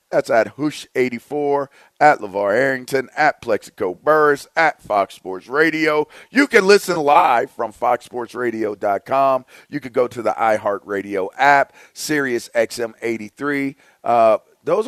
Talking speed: 115 wpm